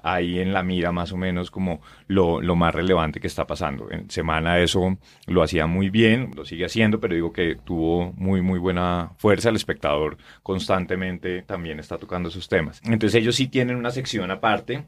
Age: 30-49